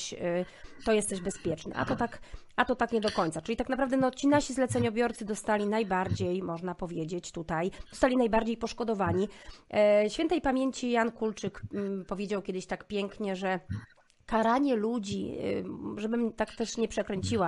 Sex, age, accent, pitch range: female, 30-49, native, 195-245 Hz